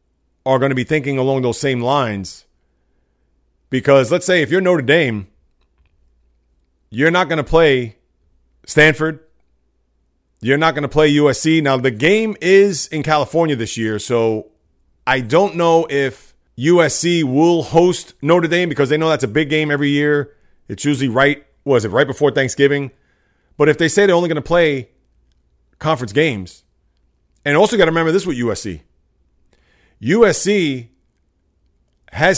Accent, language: American, English